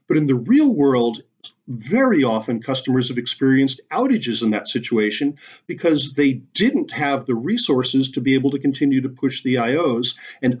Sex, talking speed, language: male, 170 wpm, English